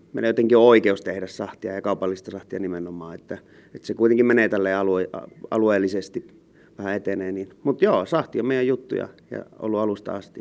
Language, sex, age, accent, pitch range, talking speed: Finnish, male, 30-49, native, 95-115 Hz, 165 wpm